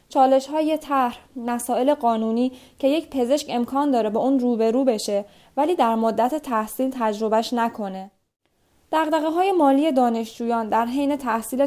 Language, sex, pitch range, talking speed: Persian, female, 215-280 Hz, 150 wpm